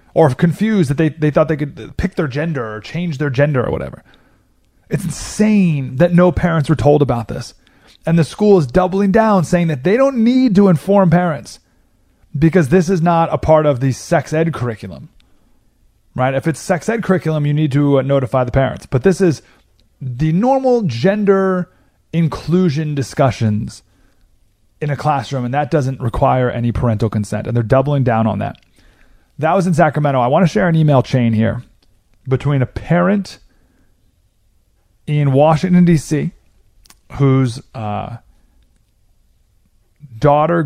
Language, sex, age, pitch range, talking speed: English, male, 30-49, 120-170 Hz, 160 wpm